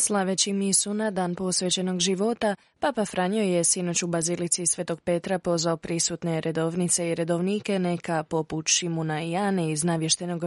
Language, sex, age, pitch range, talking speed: Croatian, female, 20-39, 165-195 Hz, 145 wpm